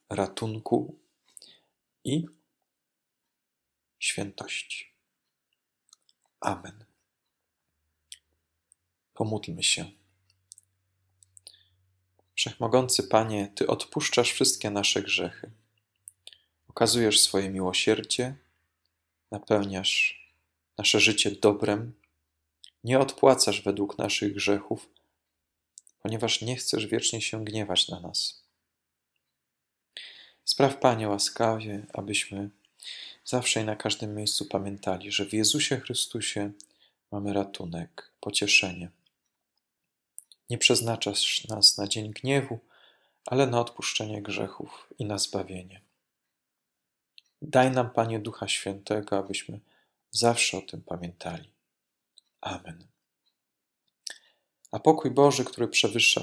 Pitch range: 95-115 Hz